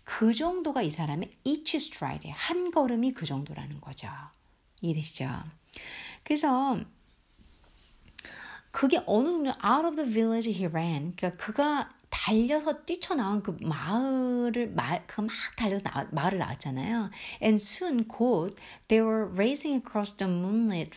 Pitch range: 180-265 Hz